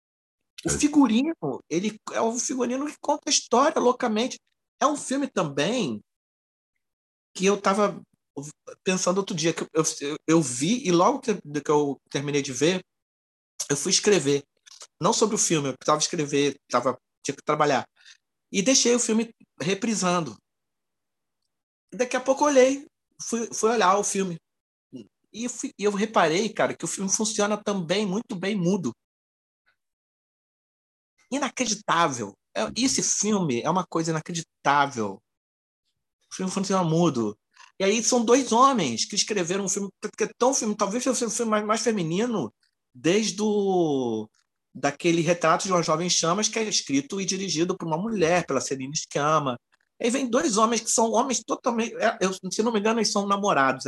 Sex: male